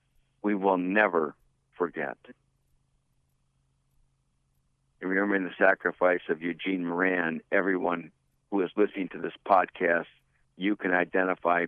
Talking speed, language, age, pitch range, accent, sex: 105 wpm, English, 60-79, 80-95 Hz, American, male